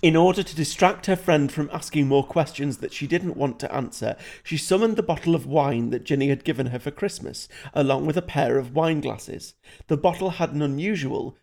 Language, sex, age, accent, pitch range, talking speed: English, male, 40-59, British, 135-180 Hz, 215 wpm